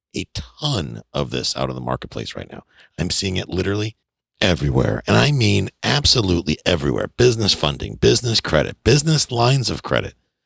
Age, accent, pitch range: 50-69, American, 75-120 Hz